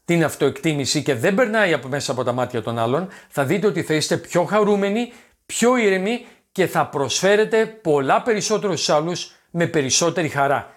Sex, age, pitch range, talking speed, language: male, 40-59, 140-195 Hz, 175 wpm, Greek